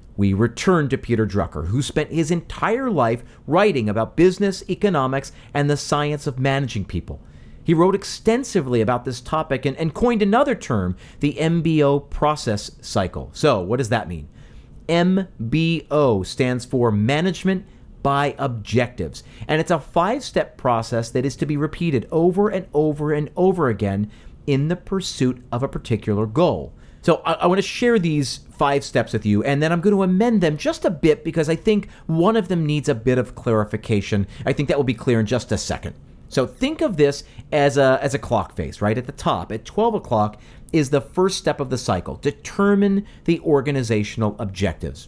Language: English